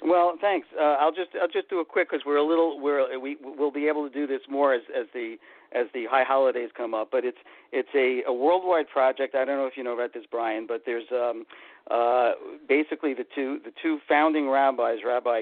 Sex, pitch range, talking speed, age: male, 125-165 Hz, 235 wpm, 50-69